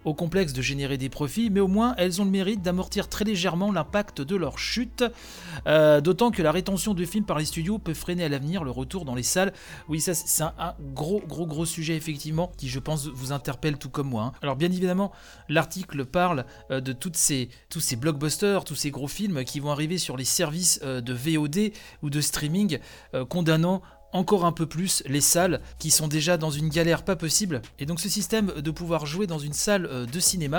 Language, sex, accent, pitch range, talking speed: French, male, French, 145-195 Hz, 210 wpm